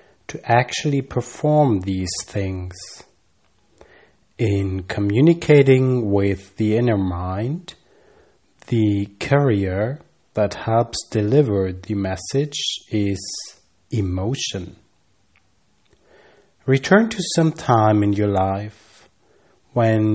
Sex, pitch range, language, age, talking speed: male, 95-130 Hz, English, 30-49, 85 wpm